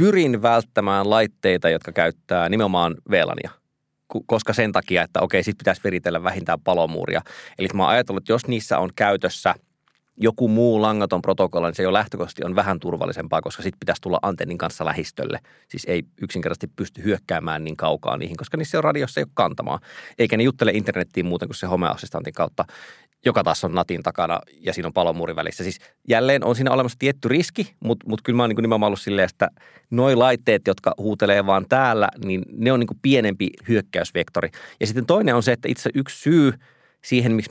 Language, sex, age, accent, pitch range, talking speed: Finnish, male, 20-39, native, 95-125 Hz, 190 wpm